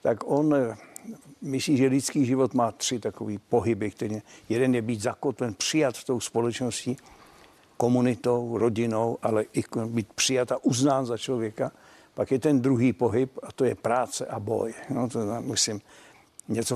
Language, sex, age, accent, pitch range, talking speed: Czech, male, 60-79, native, 115-135 Hz, 160 wpm